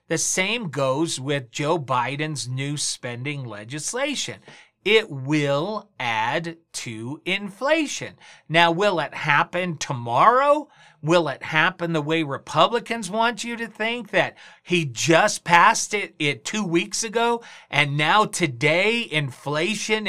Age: 40-59